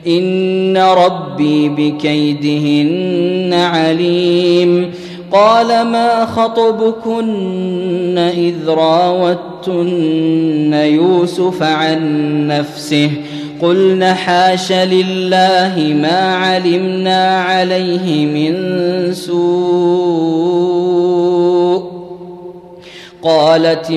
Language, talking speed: Arabic, 55 wpm